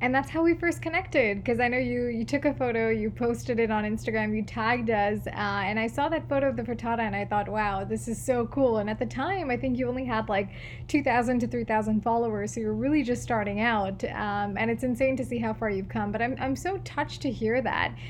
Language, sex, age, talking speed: English, female, 10-29, 255 wpm